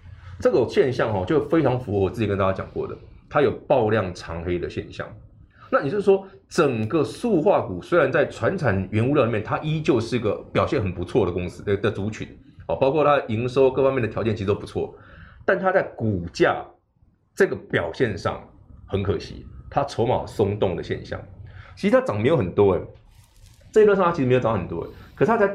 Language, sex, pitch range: Chinese, male, 95-135 Hz